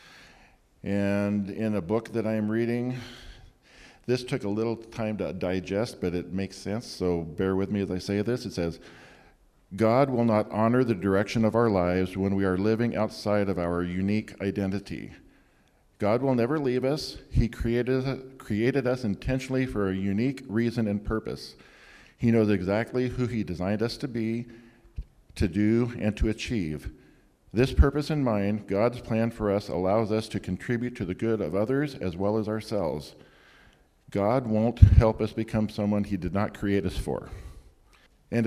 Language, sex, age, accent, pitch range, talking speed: English, male, 50-69, American, 100-120 Hz, 175 wpm